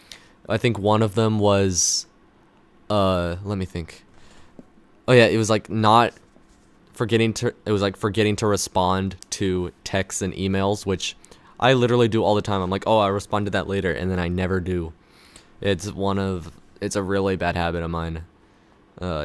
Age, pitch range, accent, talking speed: 20-39, 90-105 Hz, American, 185 wpm